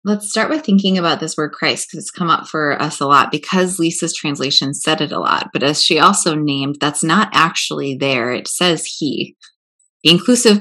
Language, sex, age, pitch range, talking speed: English, female, 20-39, 150-190 Hz, 210 wpm